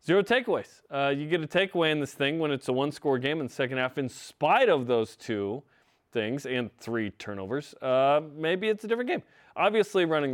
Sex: male